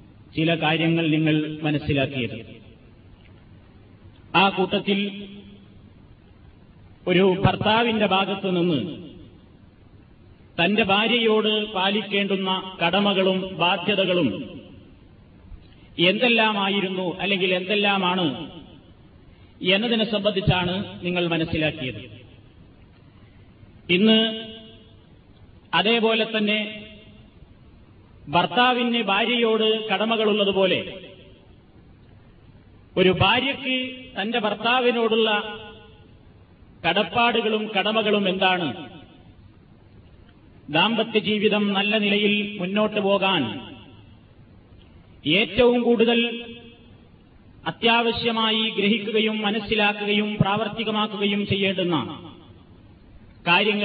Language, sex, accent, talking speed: Malayalam, male, native, 55 wpm